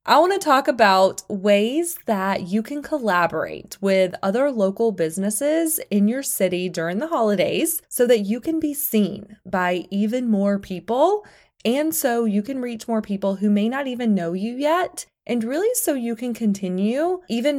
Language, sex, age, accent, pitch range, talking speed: English, female, 20-39, American, 190-250 Hz, 175 wpm